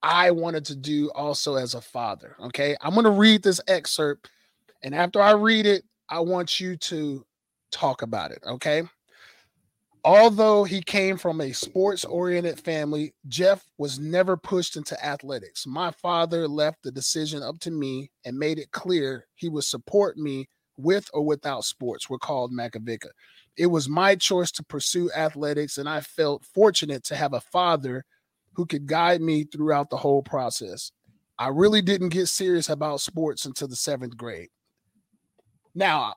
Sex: male